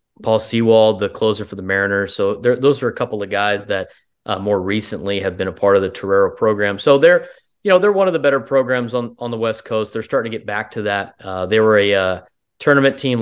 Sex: male